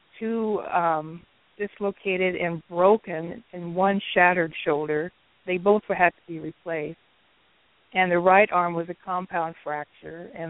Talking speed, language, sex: 135 wpm, English, female